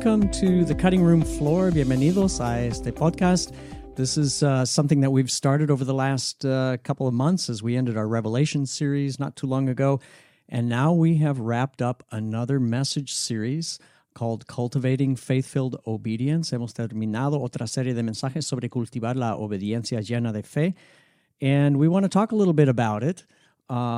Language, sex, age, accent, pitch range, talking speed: English, male, 50-69, American, 115-150 Hz, 180 wpm